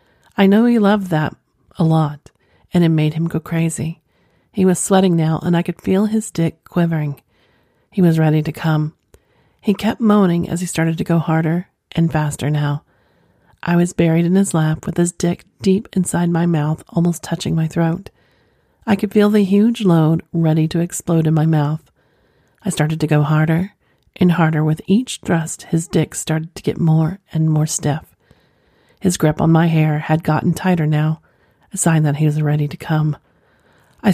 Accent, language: American, English